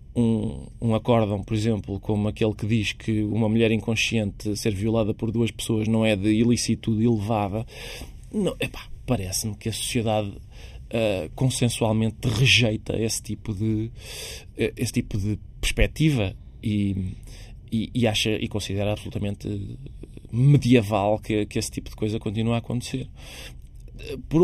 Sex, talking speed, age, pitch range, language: male, 145 wpm, 20-39, 110-125 Hz, Portuguese